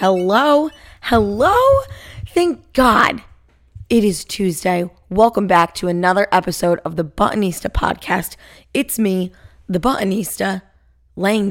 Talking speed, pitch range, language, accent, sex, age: 110 wpm, 160-230 Hz, English, American, female, 20-39